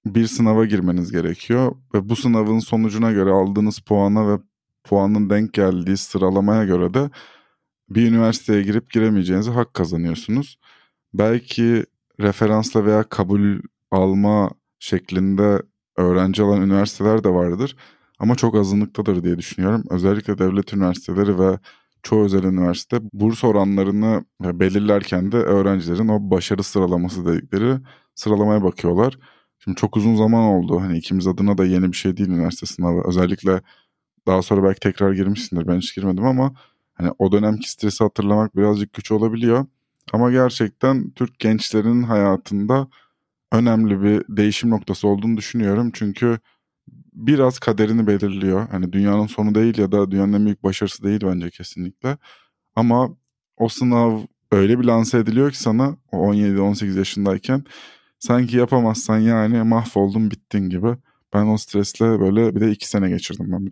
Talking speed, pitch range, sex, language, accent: 140 wpm, 95-115 Hz, male, Turkish, native